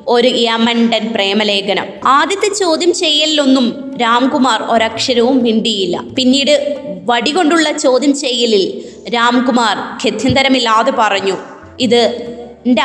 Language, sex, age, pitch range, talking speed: Malayalam, female, 20-39, 220-275 Hz, 90 wpm